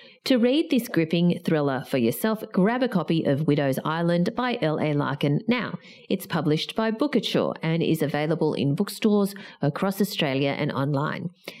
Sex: female